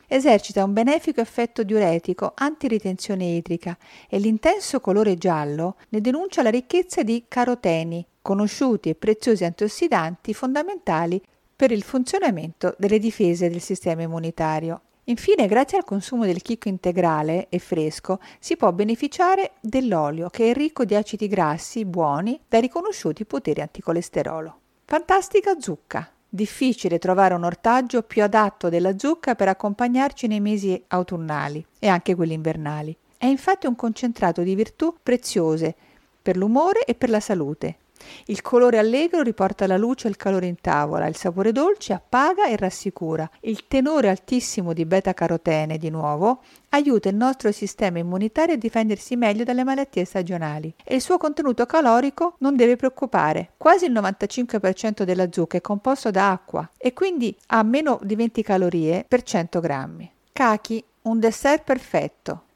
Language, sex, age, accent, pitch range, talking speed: Italian, female, 50-69, native, 180-250 Hz, 150 wpm